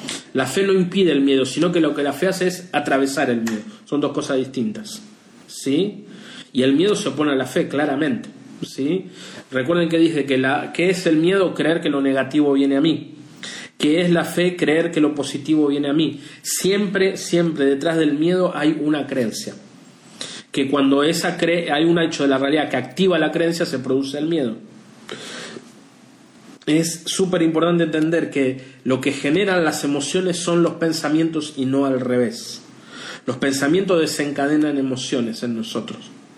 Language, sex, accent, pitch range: Spanish, male, Argentinian, 135-175 Hz